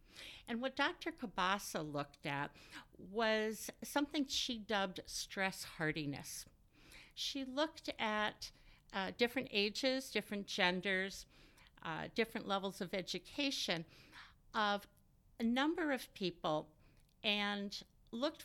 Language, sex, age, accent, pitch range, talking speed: English, female, 60-79, American, 165-230 Hz, 105 wpm